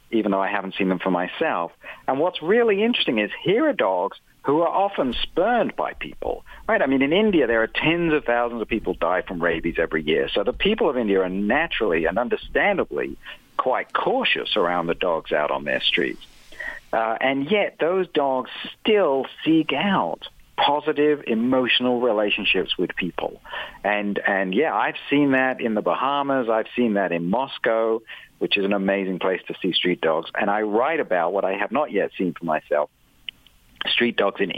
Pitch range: 100-150 Hz